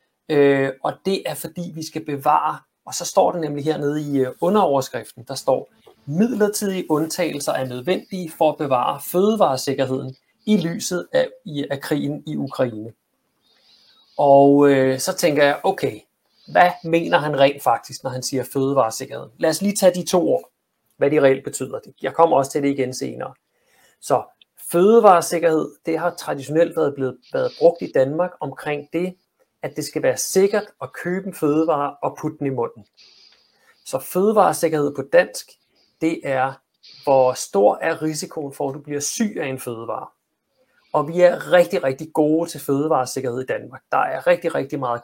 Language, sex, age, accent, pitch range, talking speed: Danish, male, 30-49, native, 135-175 Hz, 170 wpm